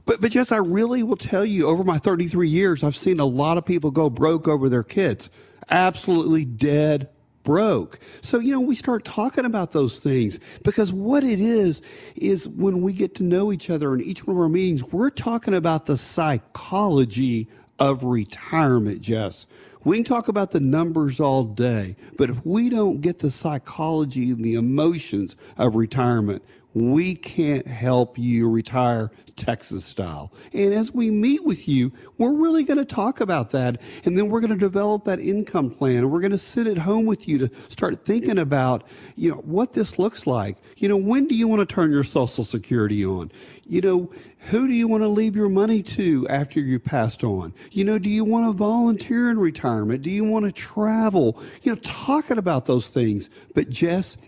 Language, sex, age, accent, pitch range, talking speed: English, male, 40-59, American, 130-210 Hz, 195 wpm